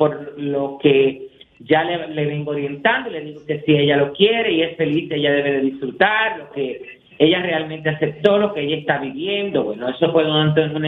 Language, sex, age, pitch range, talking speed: Spanish, male, 40-59, 140-175 Hz, 210 wpm